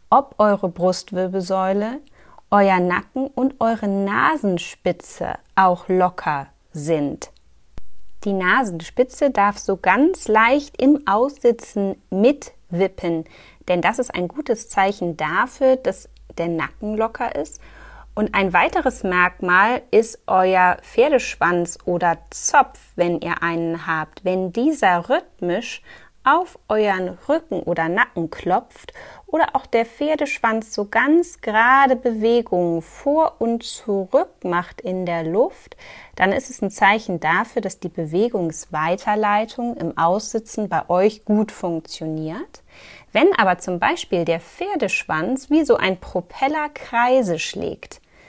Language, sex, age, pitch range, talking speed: German, female, 30-49, 180-245 Hz, 120 wpm